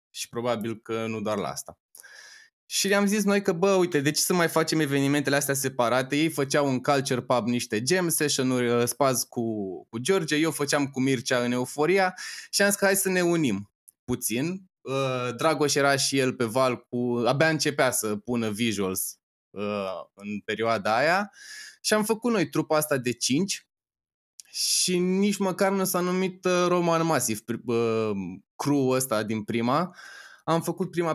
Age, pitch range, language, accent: 20-39, 120-165 Hz, Romanian, native